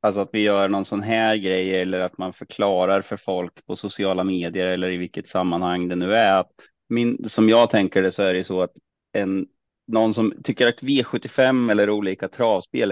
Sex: male